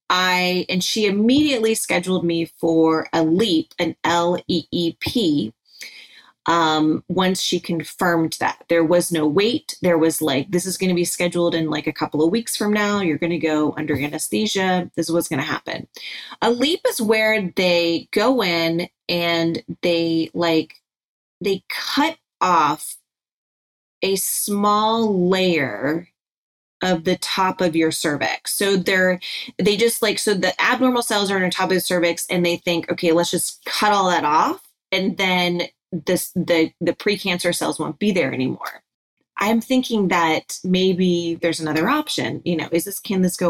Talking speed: 175 wpm